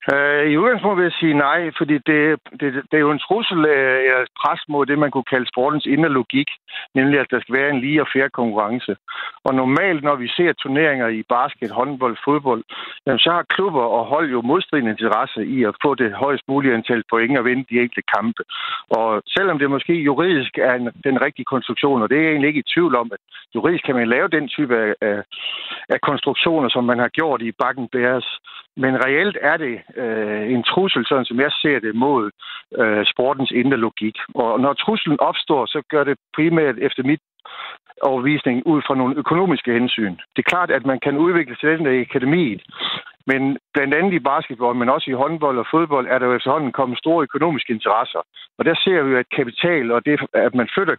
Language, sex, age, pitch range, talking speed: Danish, male, 60-79, 125-150 Hz, 205 wpm